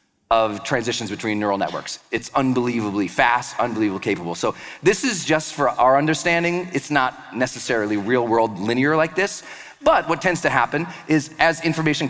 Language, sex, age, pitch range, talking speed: English, male, 40-59, 125-170 Hz, 160 wpm